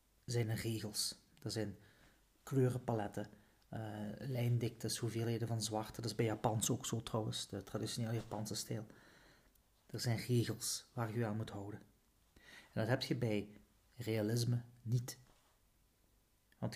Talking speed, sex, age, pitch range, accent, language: 140 wpm, male, 40-59, 105-125 Hz, Dutch, Dutch